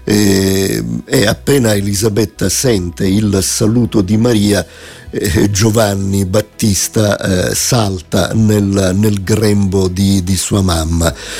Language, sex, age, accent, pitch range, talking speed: Italian, male, 50-69, native, 95-115 Hz, 100 wpm